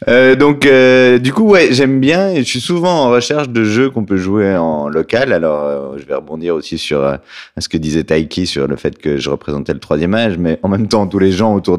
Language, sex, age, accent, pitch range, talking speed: French, male, 30-49, French, 90-115 Hz, 255 wpm